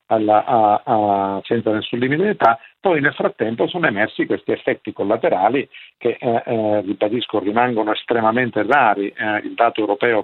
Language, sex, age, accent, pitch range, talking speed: Italian, male, 50-69, native, 110-130 Hz, 150 wpm